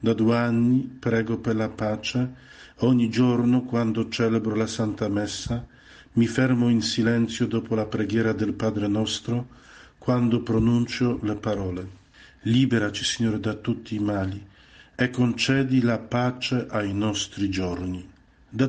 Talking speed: 135 wpm